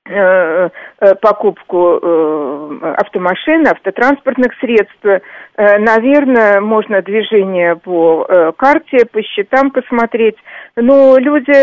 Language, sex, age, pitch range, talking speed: Russian, female, 50-69, 205-280 Hz, 70 wpm